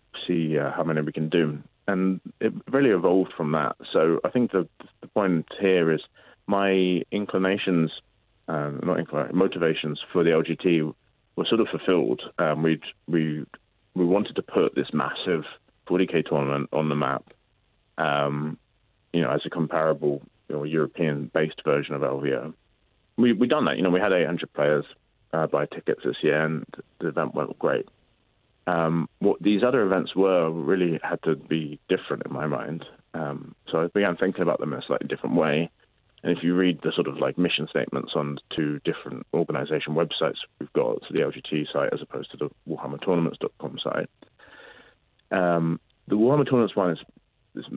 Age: 30-49